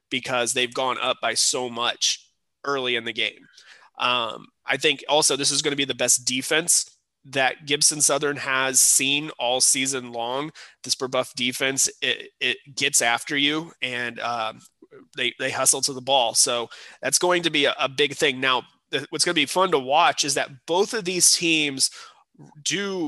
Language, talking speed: English, 185 wpm